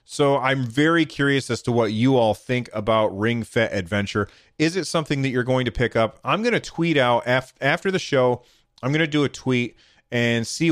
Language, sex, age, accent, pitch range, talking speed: English, male, 30-49, American, 105-135 Hz, 220 wpm